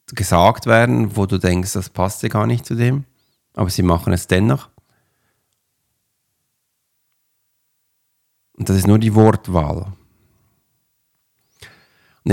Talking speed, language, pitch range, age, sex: 115 wpm, German, 95-115 Hz, 50-69, male